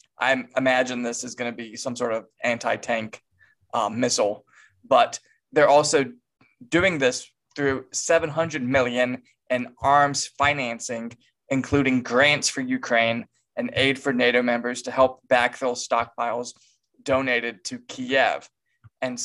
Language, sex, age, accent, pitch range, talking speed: English, male, 20-39, American, 120-150 Hz, 120 wpm